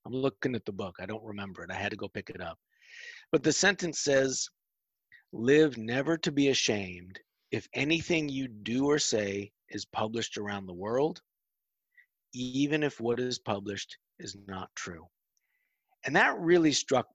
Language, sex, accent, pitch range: English, male, American, 105-135 Hz